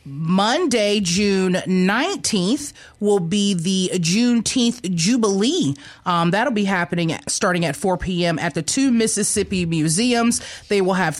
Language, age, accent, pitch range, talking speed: English, 30-49, American, 175-215 Hz, 135 wpm